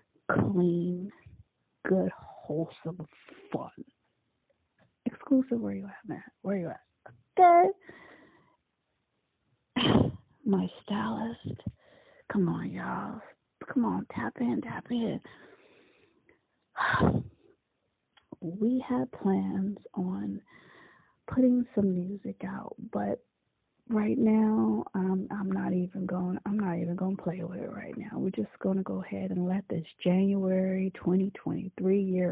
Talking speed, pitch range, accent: 115 wpm, 180-220 Hz, American